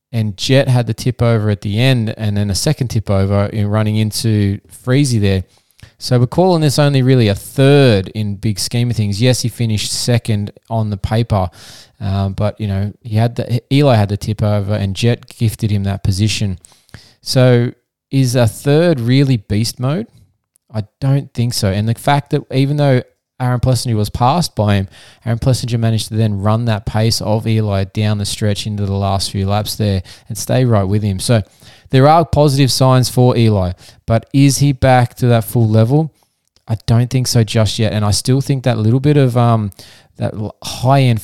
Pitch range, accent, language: 105-125 Hz, Australian, English